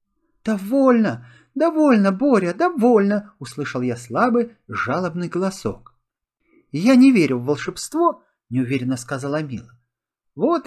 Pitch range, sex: 150-240 Hz, male